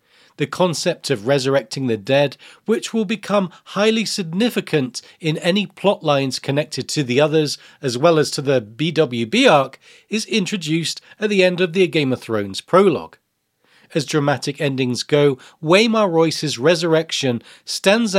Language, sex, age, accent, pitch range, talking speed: English, male, 40-59, British, 130-185 Hz, 150 wpm